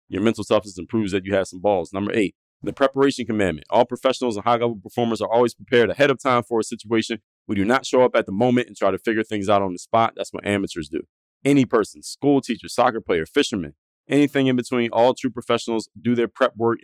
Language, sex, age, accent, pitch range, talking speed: English, male, 30-49, American, 100-120 Hz, 235 wpm